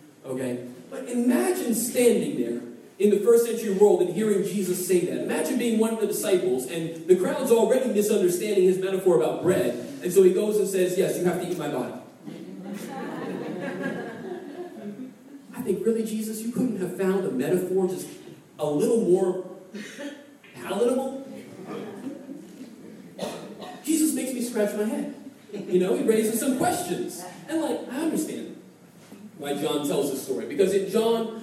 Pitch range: 185-255 Hz